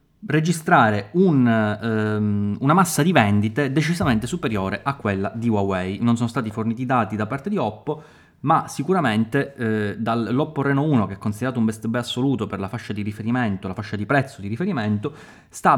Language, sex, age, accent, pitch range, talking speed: Italian, male, 20-39, native, 110-145 Hz, 175 wpm